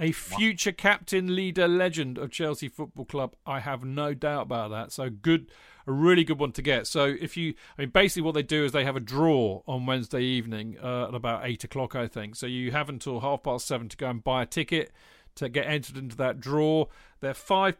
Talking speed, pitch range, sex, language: 225 wpm, 125-150 Hz, male, English